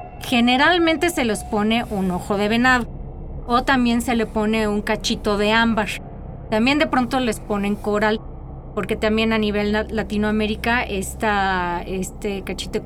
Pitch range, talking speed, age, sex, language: 200-240 Hz, 155 wpm, 30-49, female, Spanish